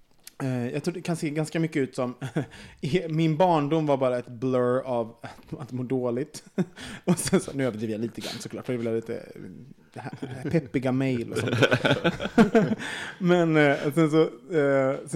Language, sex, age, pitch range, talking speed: Swedish, male, 30-49, 120-160 Hz, 150 wpm